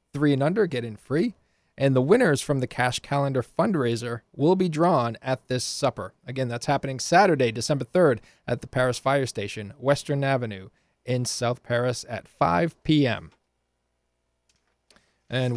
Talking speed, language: 155 wpm, English